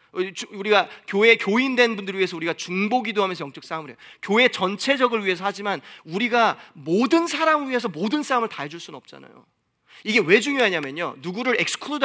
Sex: male